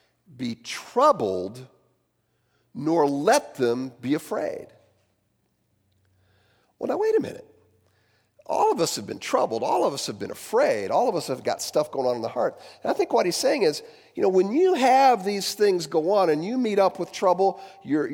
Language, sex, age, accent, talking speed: English, male, 50-69, American, 190 wpm